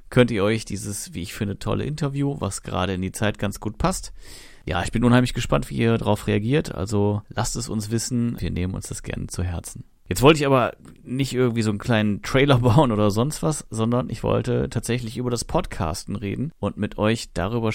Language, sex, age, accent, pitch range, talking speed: German, male, 30-49, German, 105-130 Hz, 215 wpm